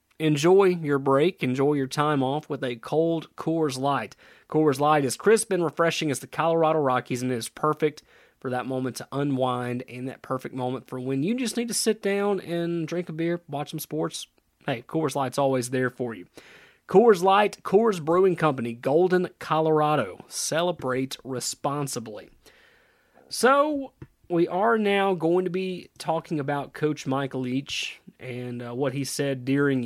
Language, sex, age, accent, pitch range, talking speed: English, male, 30-49, American, 130-160 Hz, 170 wpm